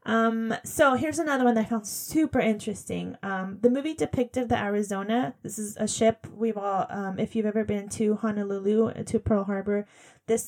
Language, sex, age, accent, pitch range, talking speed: English, female, 20-39, American, 195-225 Hz, 190 wpm